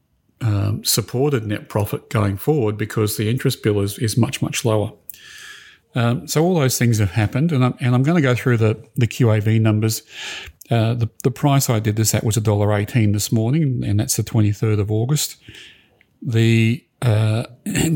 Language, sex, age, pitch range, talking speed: English, male, 40-59, 110-130 Hz, 180 wpm